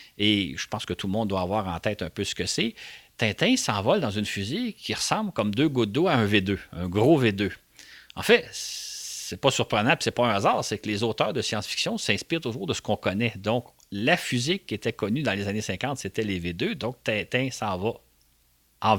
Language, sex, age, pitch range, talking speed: French, male, 40-59, 100-130 Hz, 230 wpm